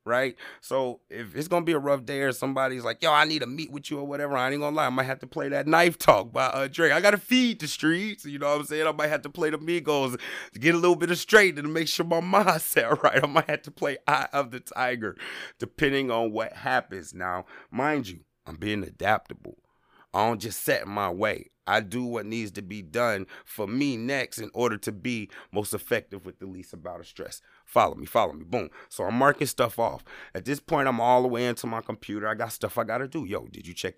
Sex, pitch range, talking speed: male, 105-145 Hz, 255 wpm